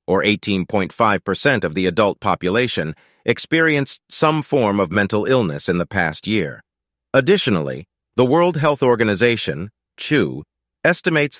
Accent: American